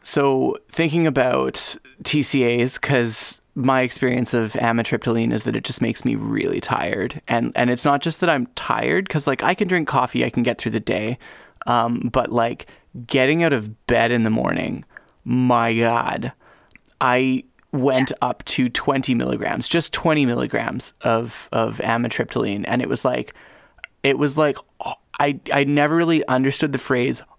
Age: 30-49